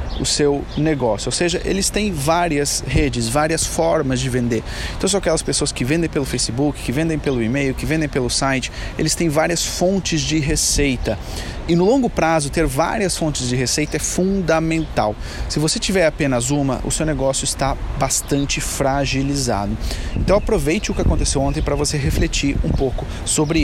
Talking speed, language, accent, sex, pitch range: 175 wpm, Portuguese, Brazilian, male, 125-160 Hz